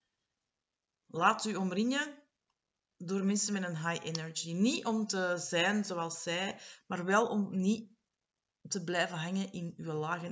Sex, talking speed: female, 145 wpm